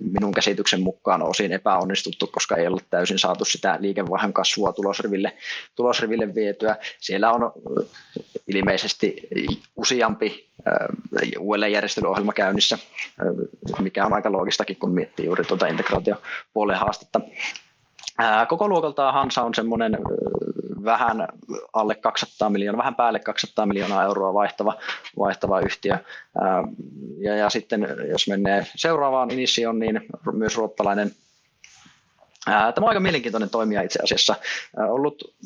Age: 20-39